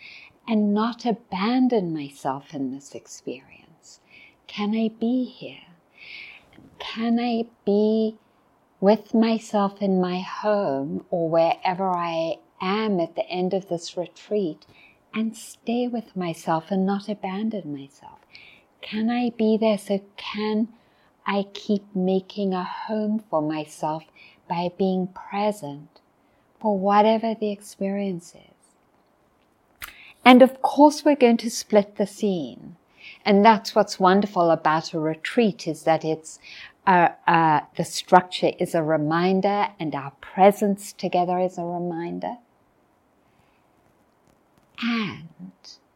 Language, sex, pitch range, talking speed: English, female, 170-220 Hz, 120 wpm